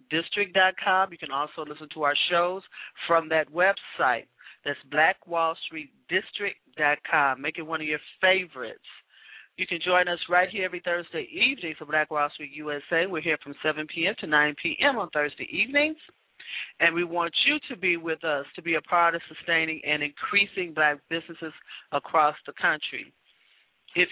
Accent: American